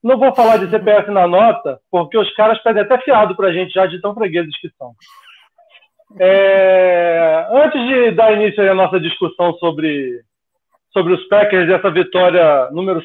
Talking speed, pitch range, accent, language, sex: 175 wpm, 175-220 Hz, Brazilian, Portuguese, male